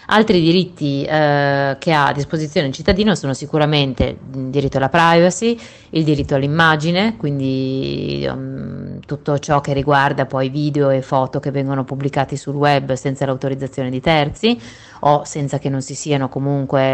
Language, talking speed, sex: Italian, 150 wpm, female